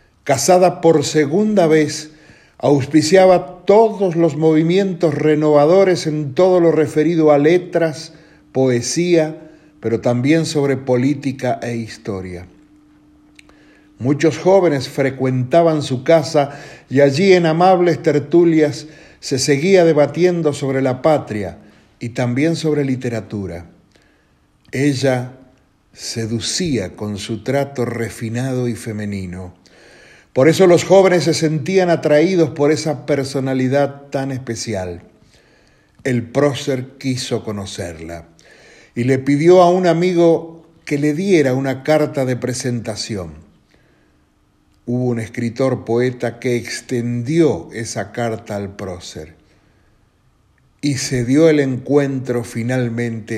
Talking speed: 105 wpm